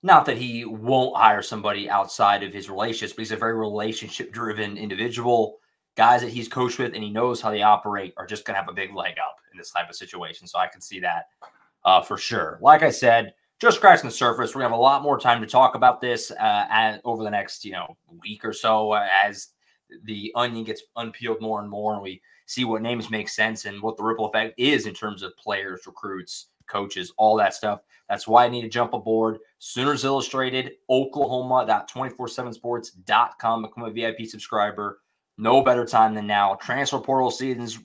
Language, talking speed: English, 205 wpm